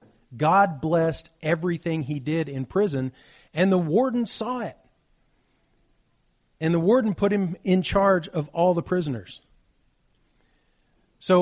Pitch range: 135-175 Hz